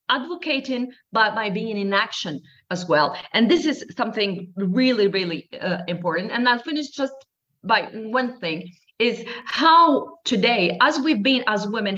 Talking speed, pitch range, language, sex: 155 wpm, 175-235 Hz, English, female